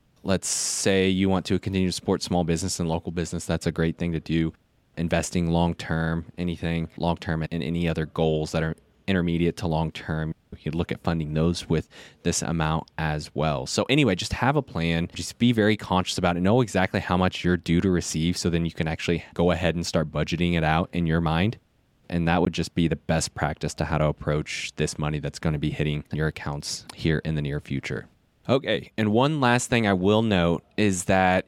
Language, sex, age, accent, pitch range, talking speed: English, male, 20-39, American, 80-95 Hz, 225 wpm